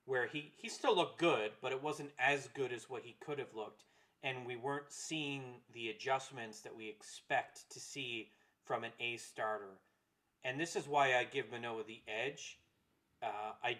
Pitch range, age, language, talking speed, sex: 115-145 Hz, 30-49, English, 185 wpm, male